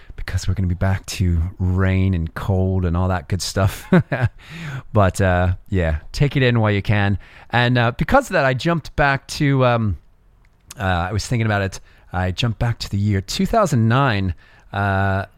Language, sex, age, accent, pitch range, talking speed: English, male, 30-49, American, 90-110 Hz, 185 wpm